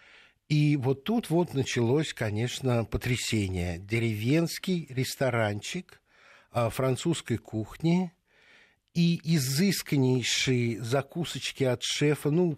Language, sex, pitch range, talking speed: Russian, male, 115-155 Hz, 75 wpm